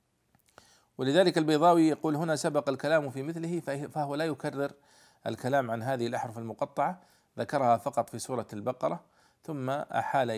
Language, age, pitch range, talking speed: Arabic, 40-59, 115-145 Hz, 135 wpm